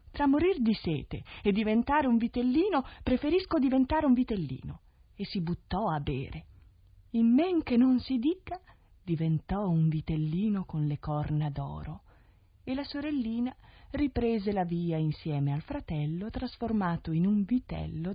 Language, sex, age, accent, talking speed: Italian, female, 40-59, native, 140 wpm